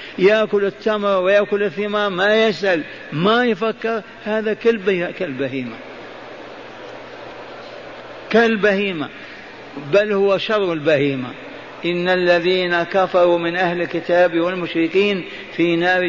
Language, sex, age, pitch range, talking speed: Arabic, male, 50-69, 190-210 Hz, 90 wpm